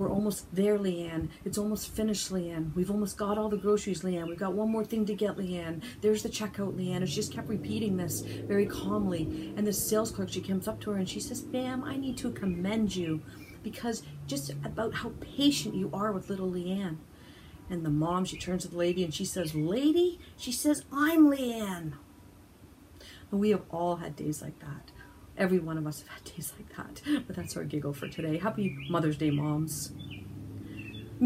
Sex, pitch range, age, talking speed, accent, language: female, 155-210 Hz, 50-69, 205 wpm, American, English